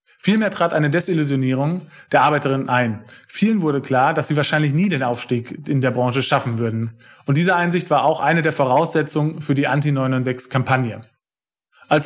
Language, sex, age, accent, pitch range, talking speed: German, male, 30-49, German, 135-165 Hz, 165 wpm